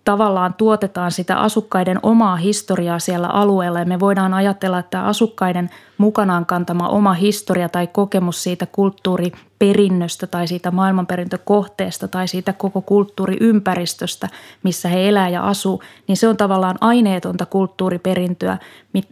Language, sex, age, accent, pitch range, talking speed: Finnish, female, 20-39, native, 180-200 Hz, 120 wpm